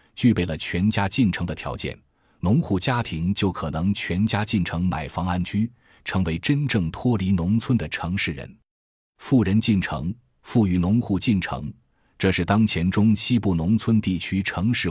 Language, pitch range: Chinese, 85-115 Hz